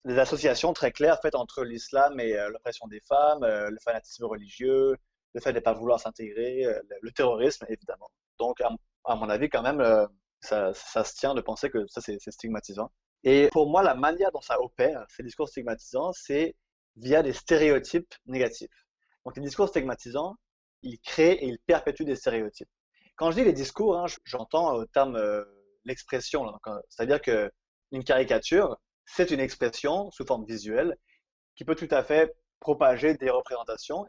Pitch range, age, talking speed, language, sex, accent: 115-175 Hz, 30-49, 175 wpm, French, male, French